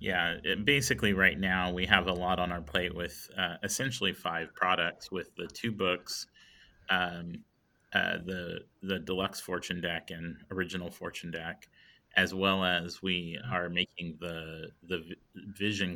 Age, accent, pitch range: 30-49, American, 85-100 Hz